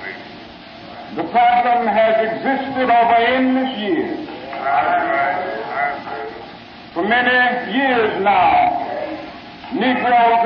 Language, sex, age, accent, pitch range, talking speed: English, male, 50-69, American, 230-290 Hz, 70 wpm